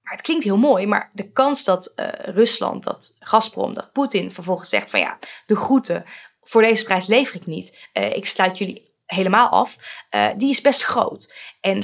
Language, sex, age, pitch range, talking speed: Dutch, female, 20-39, 180-235 Hz, 195 wpm